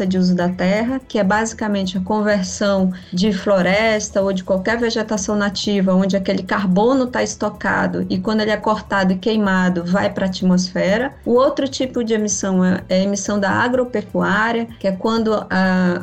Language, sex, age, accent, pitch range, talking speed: Portuguese, female, 20-39, Brazilian, 190-225 Hz, 170 wpm